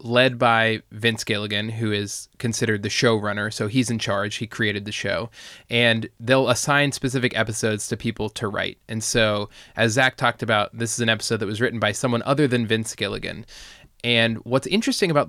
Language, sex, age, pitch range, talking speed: English, male, 20-39, 110-125 Hz, 190 wpm